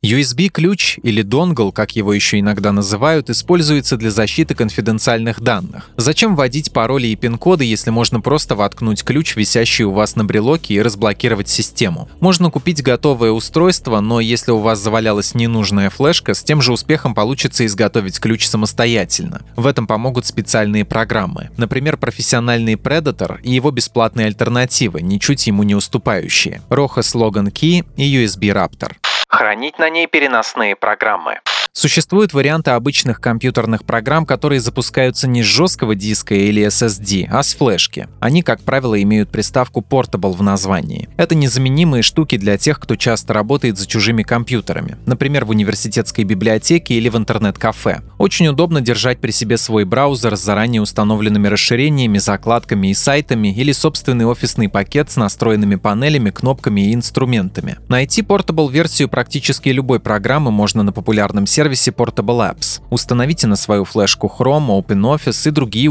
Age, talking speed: 20-39, 145 wpm